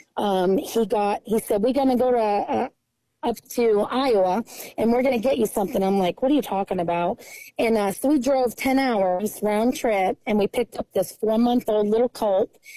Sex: female